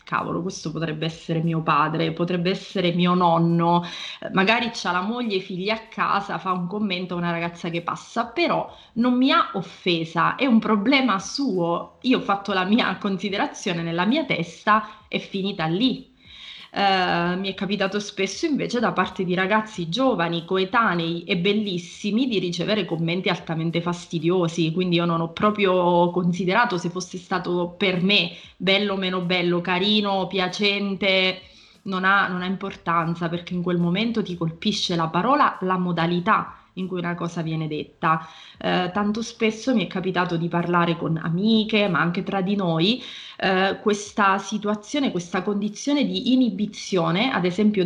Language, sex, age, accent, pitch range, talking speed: Italian, female, 30-49, native, 175-210 Hz, 160 wpm